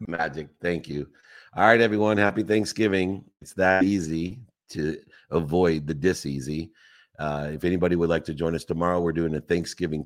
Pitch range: 75-85 Hz